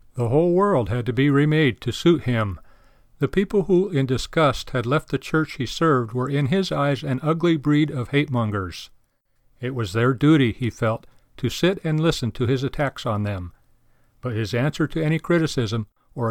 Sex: male